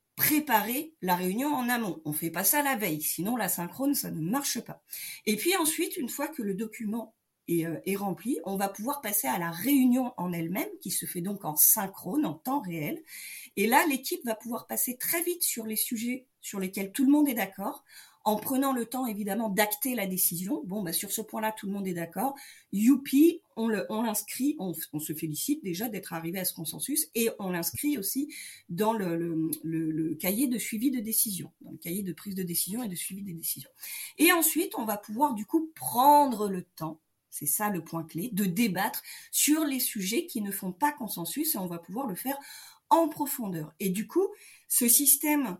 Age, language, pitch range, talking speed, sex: 40-59, French, 190-275 Hz, 210 wpm, female